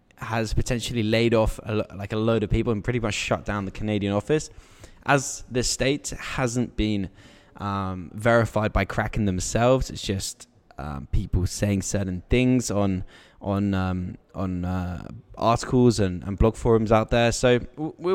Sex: male